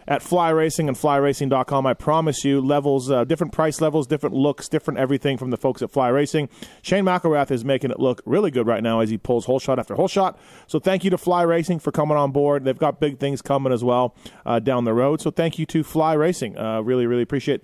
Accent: American